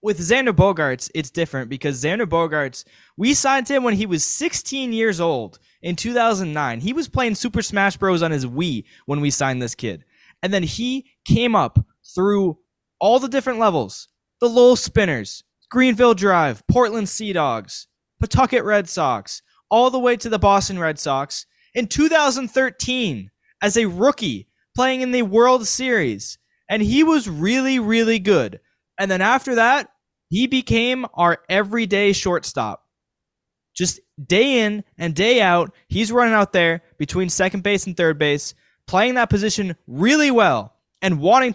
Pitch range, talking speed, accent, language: 165-240 Hz, 160 wpm, American, English